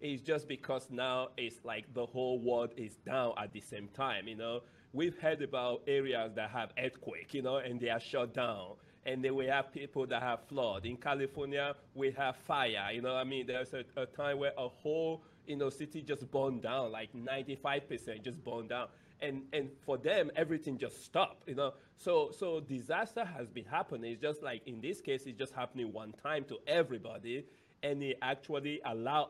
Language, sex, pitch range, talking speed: English, male, 120-145 Hz, 200 wpm